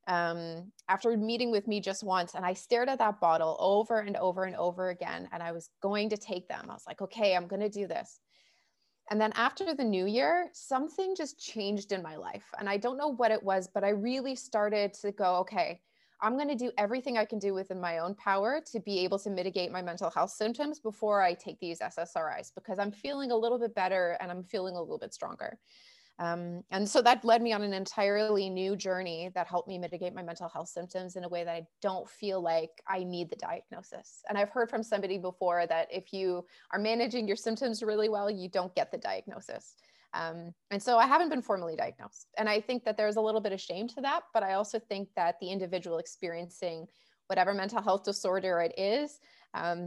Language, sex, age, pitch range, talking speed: English, female, 20-39, 180-225 Hz, 225 wpm